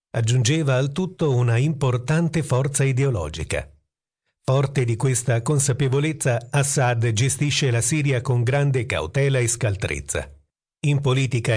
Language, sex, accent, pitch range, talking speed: Italian, male, native, 115-140 Hz, 115 wpm